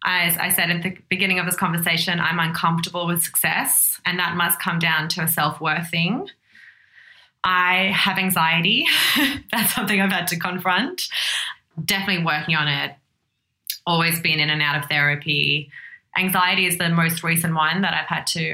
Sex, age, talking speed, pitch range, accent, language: female, 20-39, 170 wpm, 155-180 Hz, Australian, English